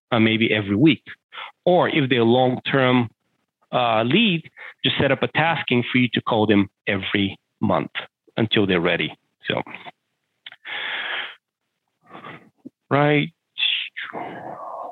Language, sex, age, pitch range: English, male, 40-59, 110-135 Hz